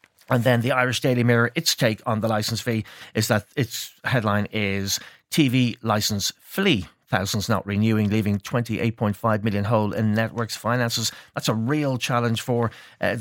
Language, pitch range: English, 110-135 Hz